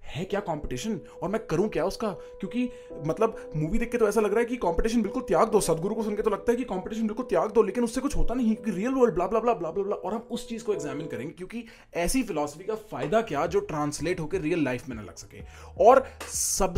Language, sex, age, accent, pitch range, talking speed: English, male, 30-49, Indian, 140-210 Hz, 195 wpm